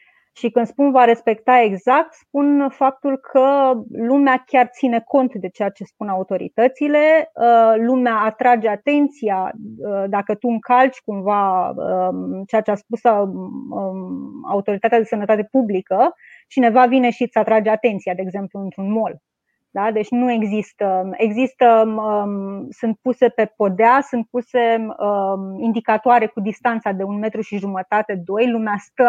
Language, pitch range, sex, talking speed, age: Romanian, 210-260 Hz, female, 135 wpm, 20-39